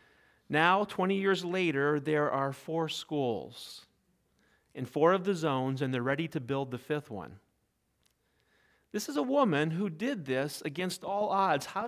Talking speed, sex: 160 wpm, male